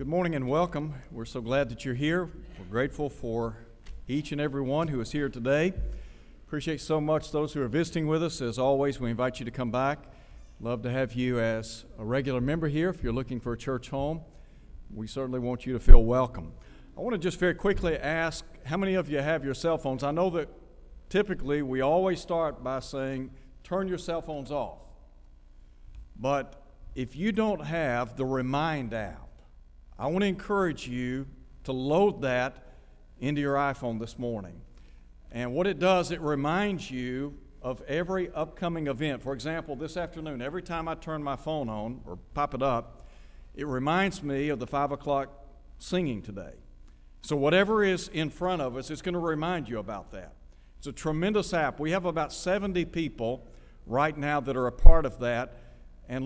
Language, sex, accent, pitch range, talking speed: English, male, American, 120-160 Hz, 190 wpm